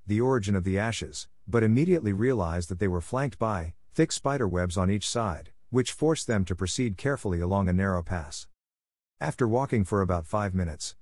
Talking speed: 185 wpm